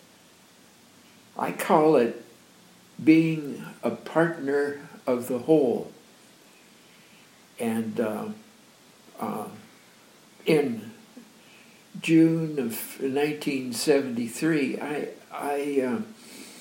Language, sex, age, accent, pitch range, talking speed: English, male, 60-79, American, 140-220 Hz, 60 wpm